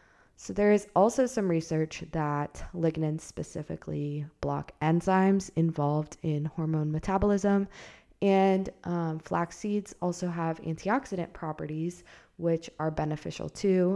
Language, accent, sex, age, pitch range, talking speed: English, American, female, 20-39, 150-185 Hz, 115 wpm